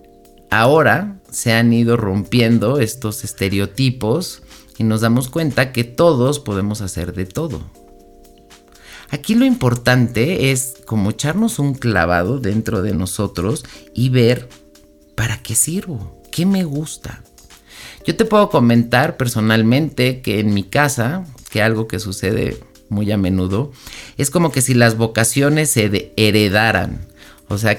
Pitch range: 100-130 Hz